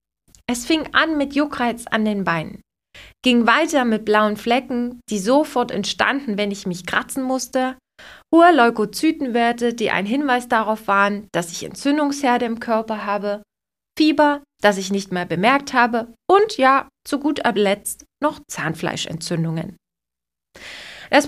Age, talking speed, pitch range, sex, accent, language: 20-39, 140 wpm, 210-285 Hz, female, German, German